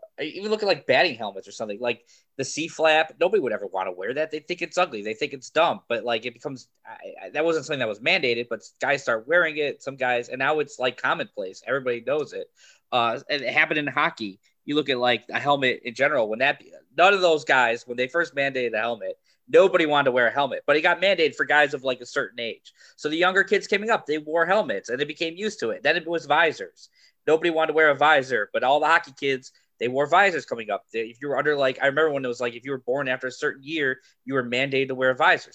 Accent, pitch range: American, 130-180 Hz